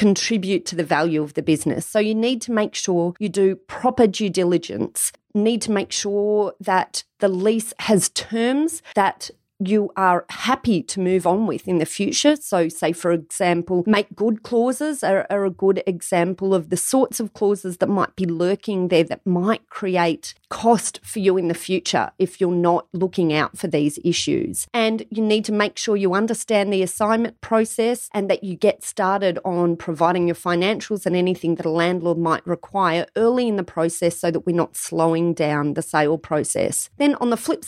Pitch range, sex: 175-220 Hz, female